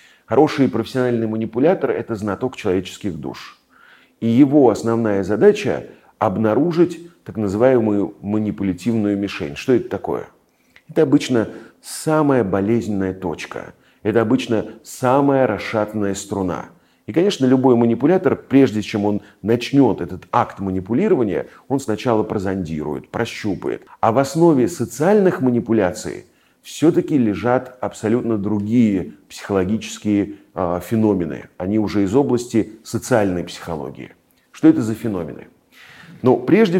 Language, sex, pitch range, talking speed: Russian, male, 95-120 Hz, 110 wpm